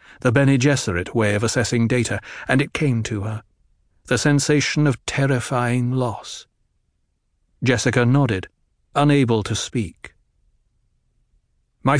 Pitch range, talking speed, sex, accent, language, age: 115-145 Hz, 115 wpm, male, British, English, 60-79